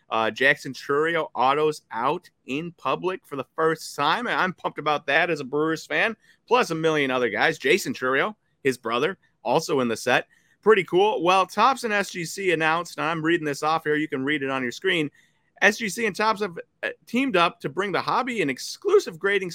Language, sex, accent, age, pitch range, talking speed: English, male, American, 30-49, 130-170 Hz, 200 wpm